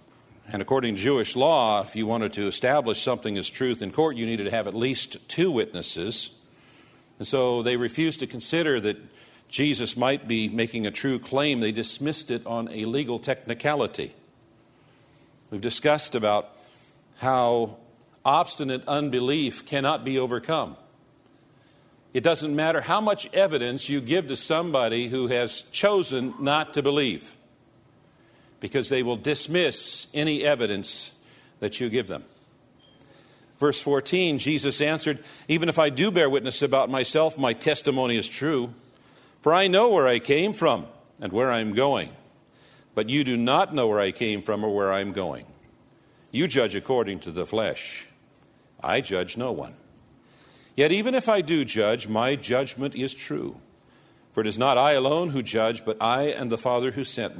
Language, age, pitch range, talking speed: English, 50-69, 115-150 Hz, 165 wpm